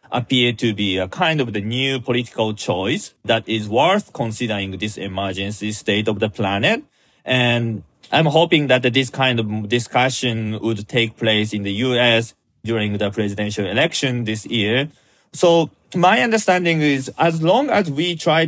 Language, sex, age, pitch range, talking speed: English, male, 30-49, 105-135 Hz, 160 wpm